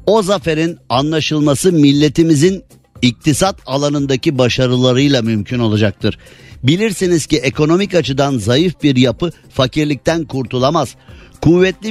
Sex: male